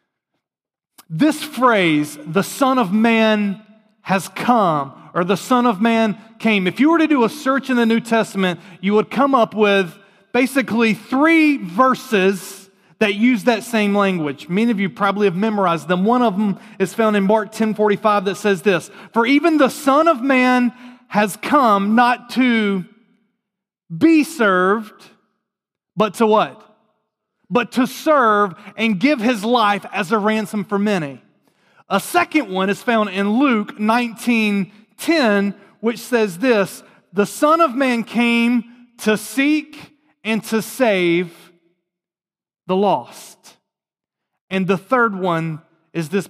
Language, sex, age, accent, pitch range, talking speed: English, male, 30-49, American, 185-235 Hz, 145 wpm